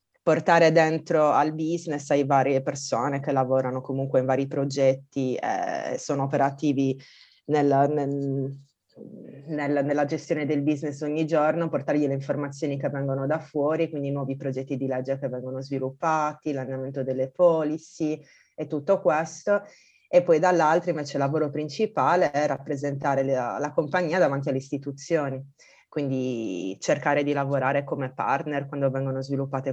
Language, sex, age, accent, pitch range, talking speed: Italian, female, 20-39, native, 135-155 Hz, 135 wpm